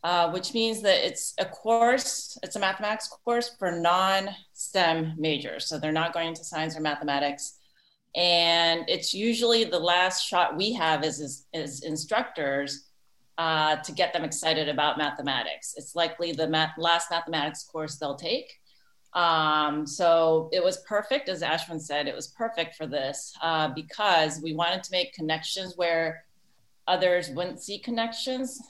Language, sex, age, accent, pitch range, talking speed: English, female, 30-49, American, 155-180 Hz, 155 wpm